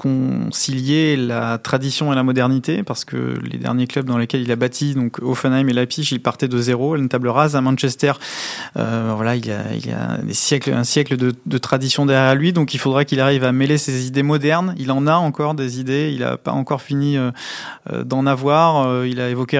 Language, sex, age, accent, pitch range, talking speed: French, male, 20-39, French, 125-140 Hz, 230 wpm